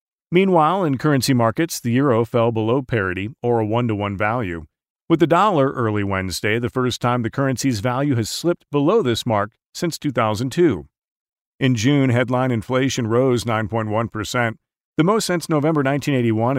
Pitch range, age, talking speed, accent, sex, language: 110-145 Hz, 40-59, 150 wpm, American, male, English